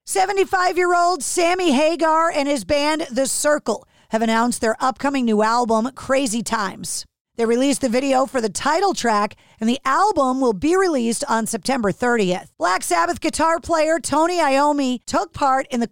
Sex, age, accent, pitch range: female, 40-59, American, 230-295 Hz